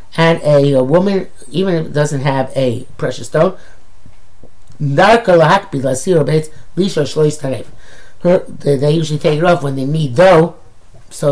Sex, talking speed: male, 115 wpm